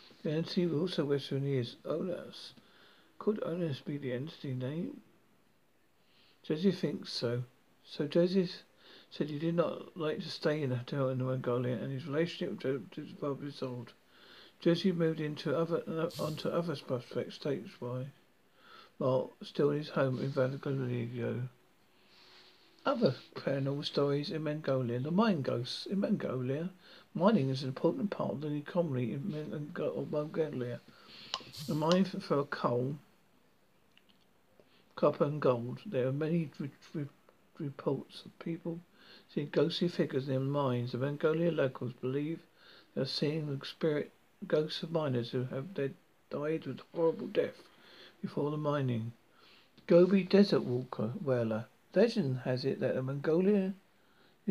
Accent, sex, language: British, male, English